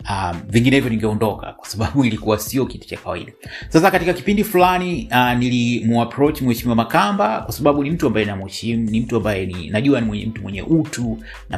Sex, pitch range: male, 100-130 Hz